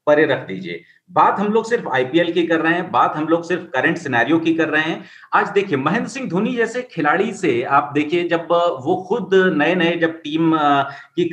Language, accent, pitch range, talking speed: Hindi, native, 155-205 Hz, 170 wpm